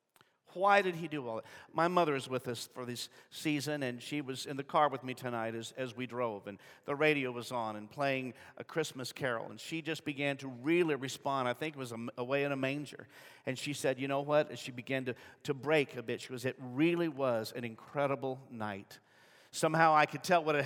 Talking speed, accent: 235 wpm, American